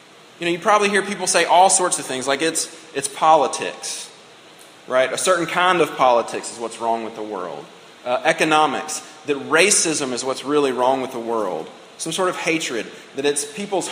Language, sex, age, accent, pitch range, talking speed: English, male, 30-49, American, 145-185 Hz, 195 wpm